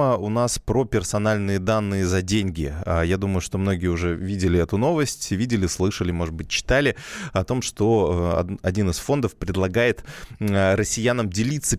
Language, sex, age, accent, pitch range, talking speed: Russian, male, 20-39, native, 90-110 Hz, 150 wpm